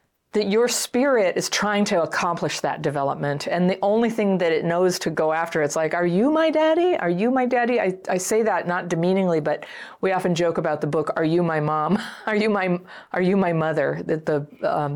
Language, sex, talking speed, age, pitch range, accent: English, female, 225 wpm, 40-59, 160-205 Hz, American